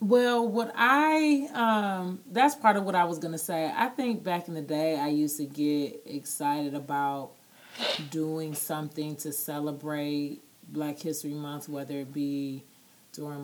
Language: English